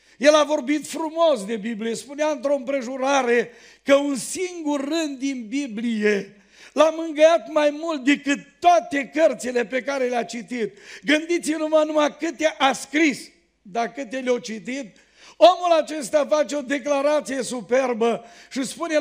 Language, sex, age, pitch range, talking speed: Romanian, male, 50-69, 245-305 Hz, 140 wpm